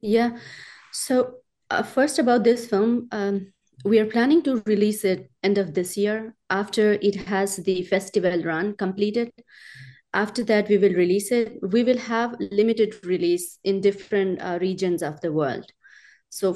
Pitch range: 180-215 Hz